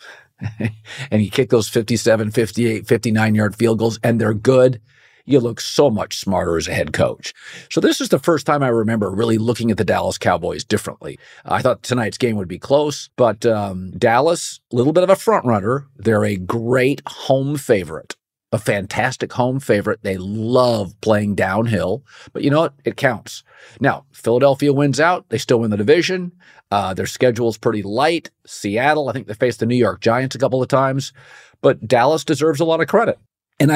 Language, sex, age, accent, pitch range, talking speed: English, male, 50-69, American, 100-135 Hz, 195 wpm